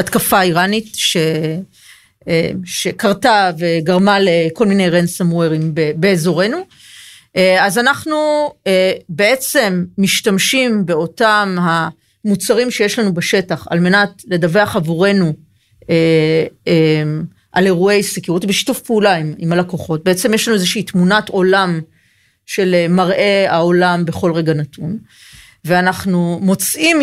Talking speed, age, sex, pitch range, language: 100 wpm, 40-59, female, 170-210 Hz, Hebrew